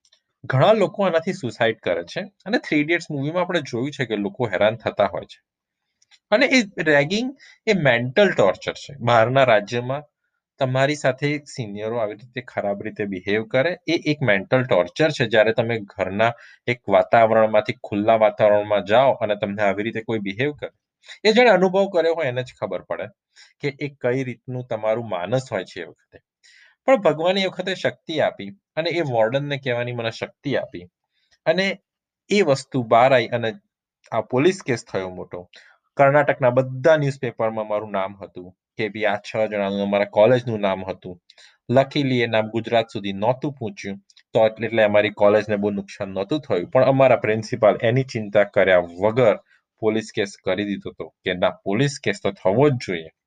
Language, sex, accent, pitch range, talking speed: Gujarati, male, native, 105-145 Hz, 90 wpm